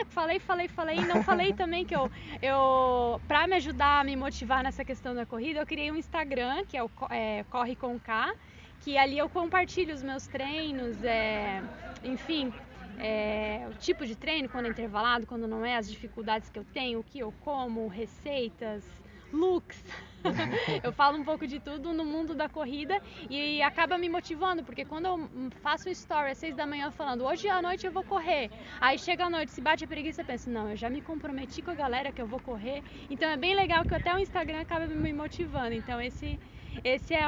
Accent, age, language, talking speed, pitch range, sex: Brazilian, 20-39, Portuguese, 205 wpm, 245-320 Hz, female